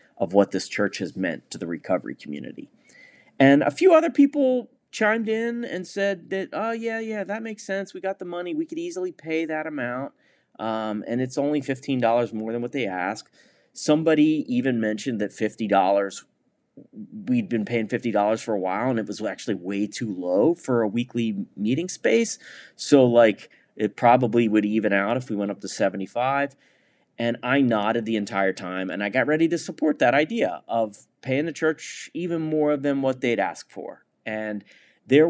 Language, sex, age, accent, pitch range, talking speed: English, male, 30-49, American, 110-165 Hz, 190 wpm